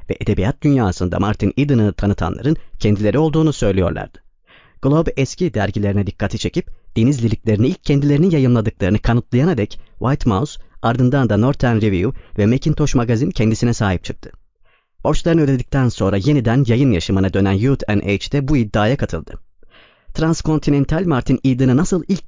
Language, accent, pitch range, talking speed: Turkish, native, 105-140 Hz, 135 wpm